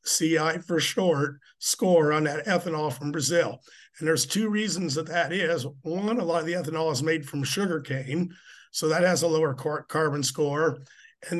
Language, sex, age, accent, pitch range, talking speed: English, male, 50-69, American, 150-180 Hz, 185 wpm